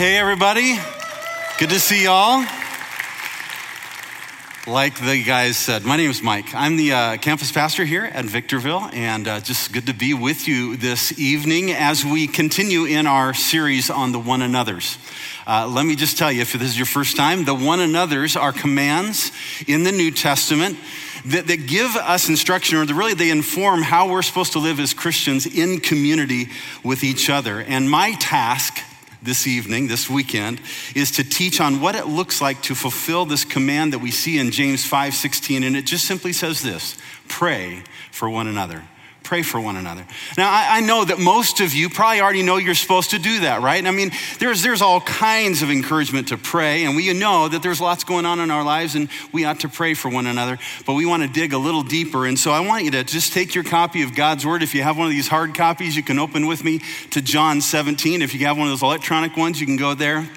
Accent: American